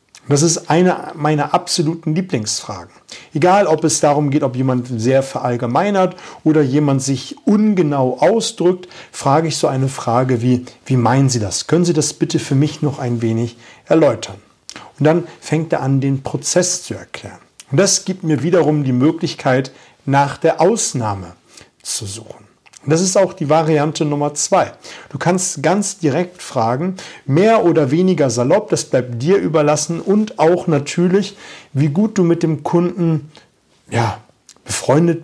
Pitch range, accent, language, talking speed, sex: 135-175 Hz, German, German, 155 wpm, male